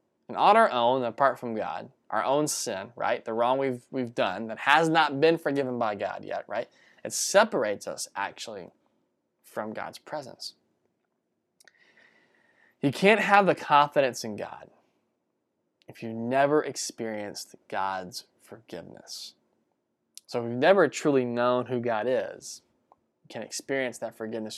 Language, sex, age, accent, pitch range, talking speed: English, male, 10-29, American, 110-145 Hz, 145 wpm